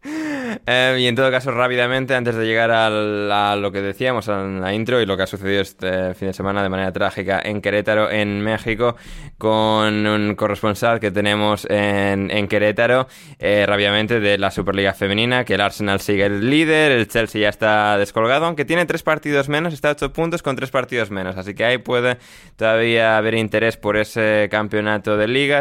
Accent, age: Spanish, 20-39